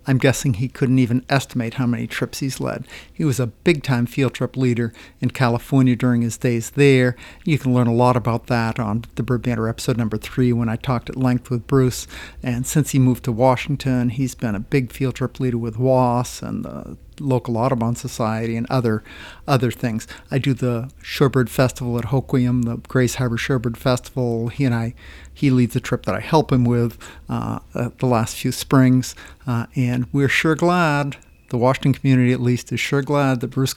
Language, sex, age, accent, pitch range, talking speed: English, male, 50-69, American, 125-140 Hz, 205 wpm